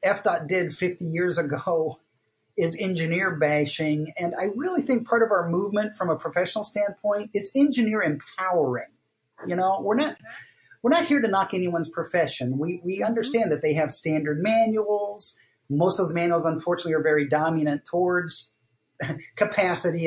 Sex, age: male, 40-59